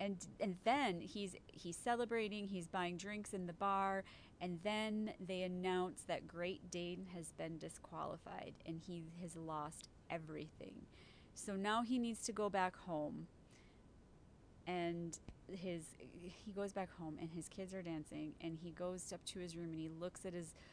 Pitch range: 160-190 Hz